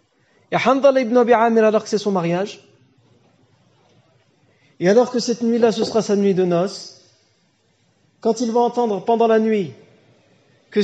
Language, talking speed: French, 140 wpm